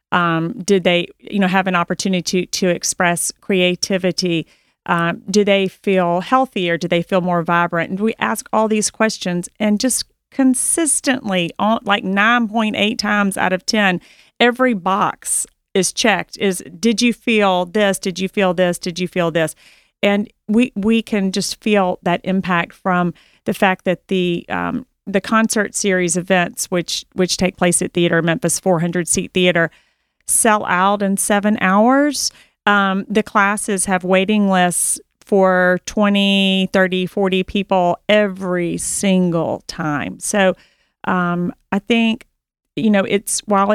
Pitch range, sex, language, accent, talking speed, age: 180-205 Hz, female, English, American, 155 wpm, 40-59